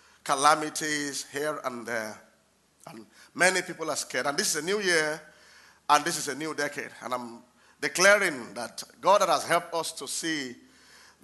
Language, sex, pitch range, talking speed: English, male, 150-195 Hz, 170 wpm